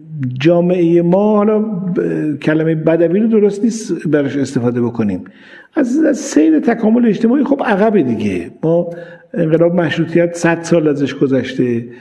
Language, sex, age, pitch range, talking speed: Persian, male, 50-69, 140-190 Hz, 135 wpm